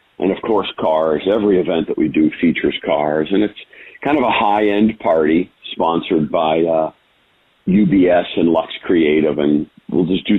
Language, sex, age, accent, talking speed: English, male, 50-69, American, 170 wpm